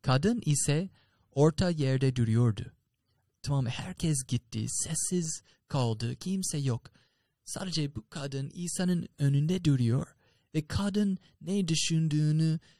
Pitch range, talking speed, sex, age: 120-165 Hz, 105 wpm, male, 30-49